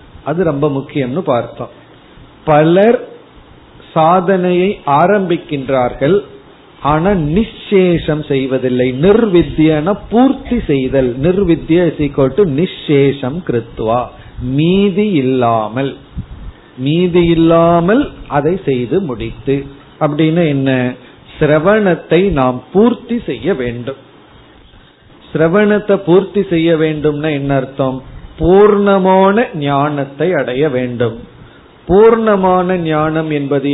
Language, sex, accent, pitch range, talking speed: Tamil, male, native, 140-180 Hz, 65 wpm